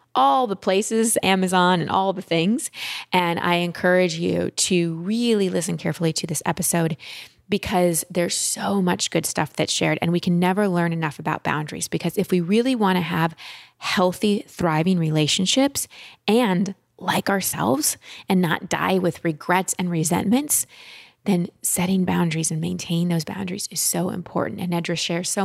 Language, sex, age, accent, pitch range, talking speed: English, female, 20-39, American, 170-195 Hz, 165 wpm